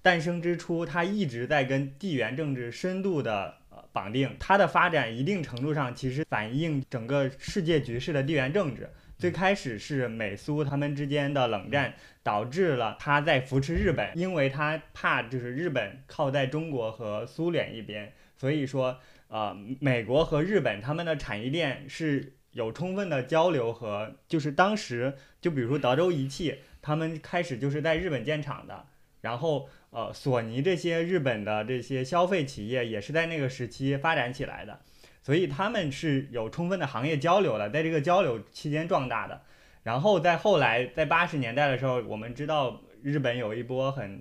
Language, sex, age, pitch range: Chinese, male, 20-39, 125-165 Hz